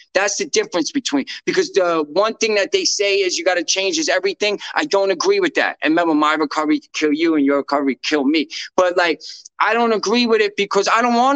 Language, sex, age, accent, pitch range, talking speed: English, male, 20-39, American, 170-235 Hz, 240 wpm